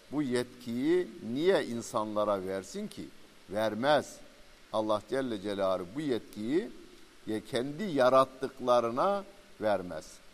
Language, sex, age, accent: Turkish, male, 50-69, native